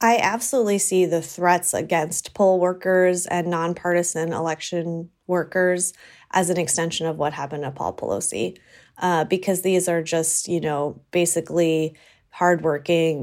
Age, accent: 20-39, American